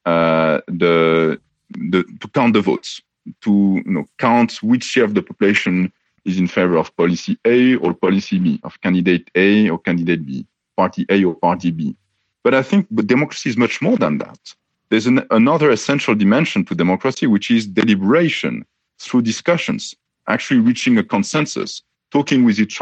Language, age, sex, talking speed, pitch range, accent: English, 40-59, male, 170 wpm, 95-145 Hz, French